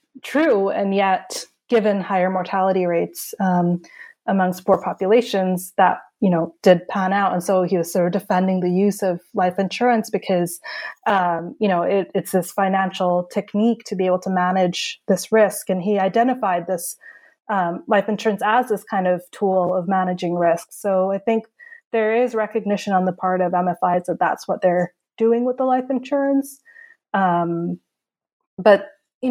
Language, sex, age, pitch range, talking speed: English, female, 20-39, 185-225 Hz, 170 wpm